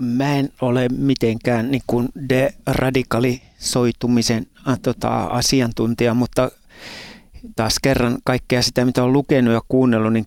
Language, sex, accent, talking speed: Finnish, male, native, 115 wpm